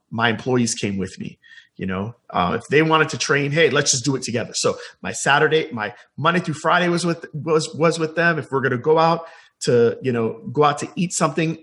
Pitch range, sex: 125-165 Hz, male